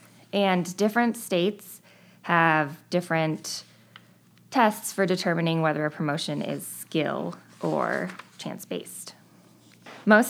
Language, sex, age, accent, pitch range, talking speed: English, female, 20-39, American, 155-185 Hz, 95 wpm